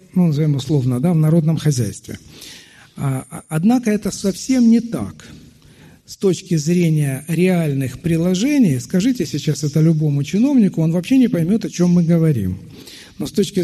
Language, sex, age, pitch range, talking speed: Russian, male, 50-69, 135-180 Hz, 145 wpm